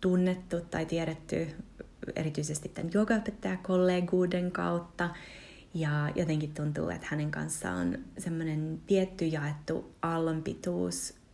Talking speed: 90 wpm